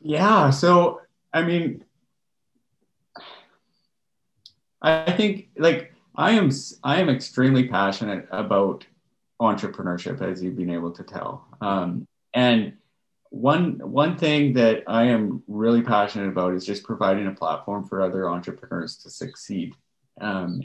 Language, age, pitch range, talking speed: English, 30-49, 100-125 Hz, 125 wpm